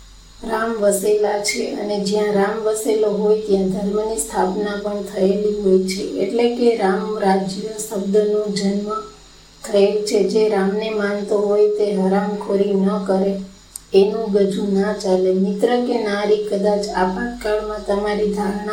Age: 30-49